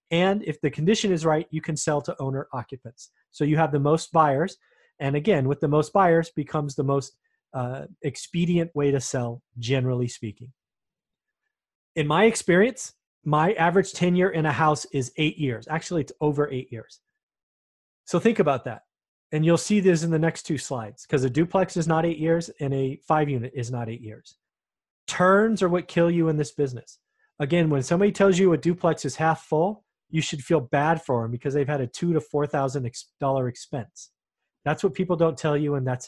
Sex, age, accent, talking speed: male, 30-49, American, 200 wpm